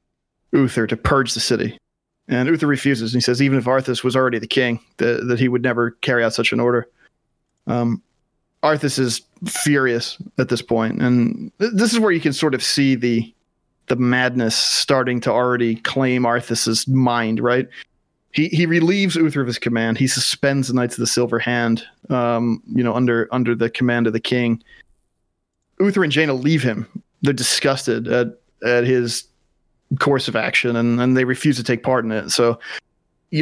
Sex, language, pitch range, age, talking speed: male, English, 120-135 Hz, 30-49, 185 wpm